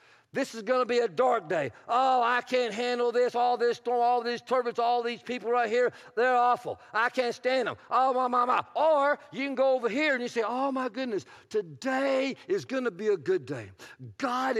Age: 50-69